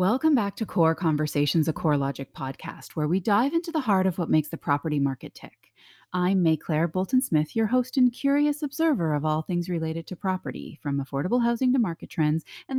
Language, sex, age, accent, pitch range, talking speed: English, female, 30-49, American, 150-235 Hz, 195 wpm